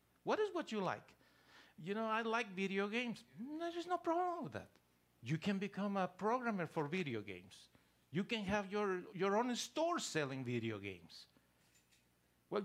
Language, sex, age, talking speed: English, male, 50-69, 165 wpm